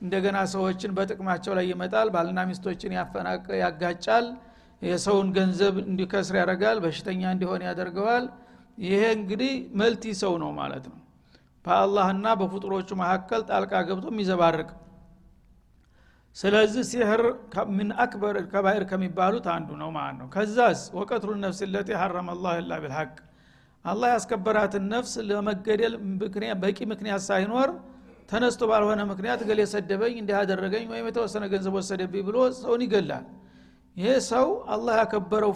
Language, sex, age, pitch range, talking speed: Amharic, male, 60-79, 185-220 Hz, 115 wpm